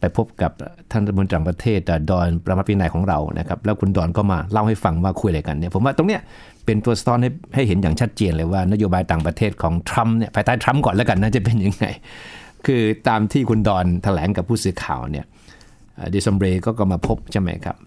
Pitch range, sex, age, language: 90-110 Hz, male, 60-79, Thai